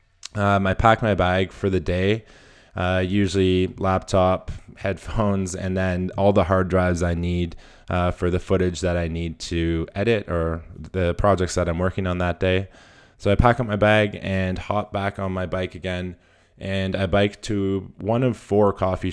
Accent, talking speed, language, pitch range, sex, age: American, 185 wpm, English, 90-100 Hz, male, 20-39